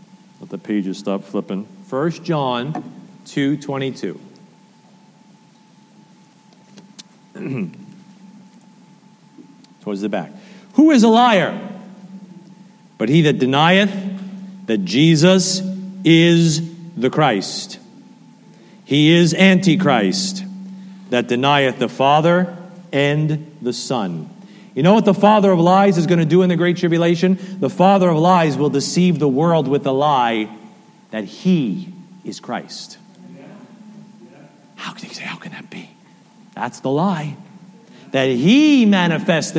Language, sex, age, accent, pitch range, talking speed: English, male, 40-59, American, 155-205 Hz, 120 wpm